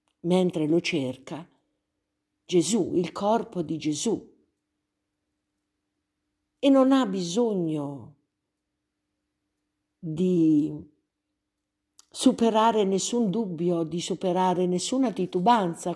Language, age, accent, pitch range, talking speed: Italian, 50-69, native, 150-210 Hz, 75 wpm